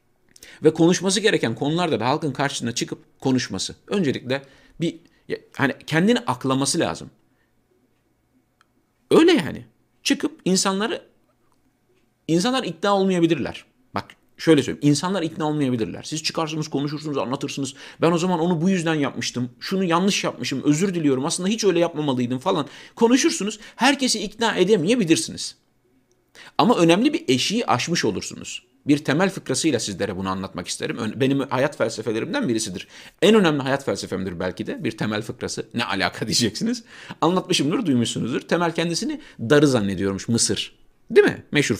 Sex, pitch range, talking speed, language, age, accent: male, 130-195 Hz, 130 wpm, Turkish, 50-69, native